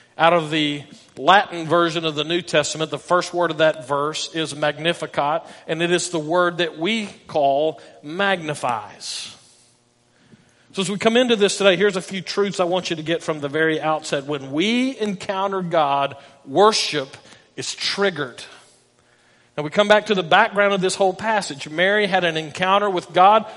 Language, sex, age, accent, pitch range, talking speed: English, male, 40-59, American, 165-210 Hz, 180 wpm